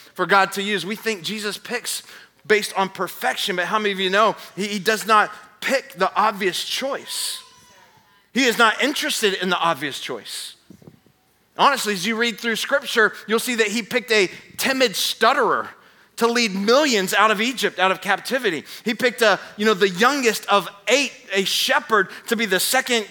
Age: 30-49